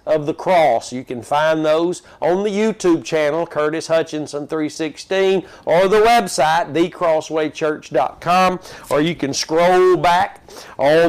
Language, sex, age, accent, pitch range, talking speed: English, male, 50-69, American, 155-190 Hz, 130 wpm